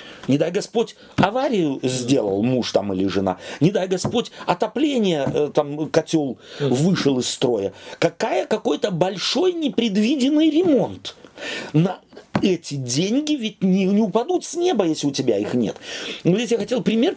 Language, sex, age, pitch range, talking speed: Russian, male, 40-59, 140-230 Hz, 145 wpm